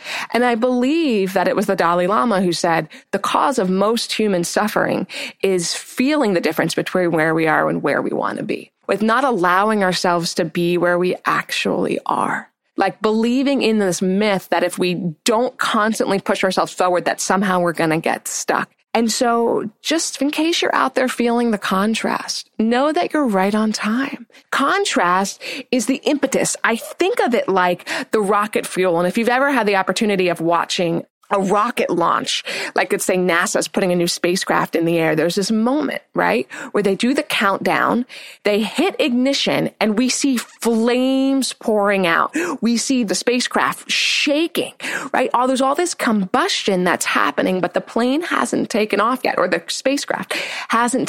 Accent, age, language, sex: American, 20-39, English, female